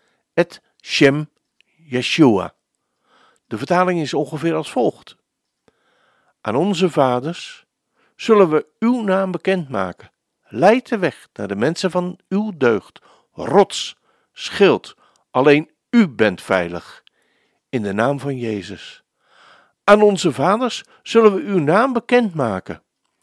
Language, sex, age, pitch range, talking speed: Dutch, male, 50-69, 120-190 Hz, 115 wpm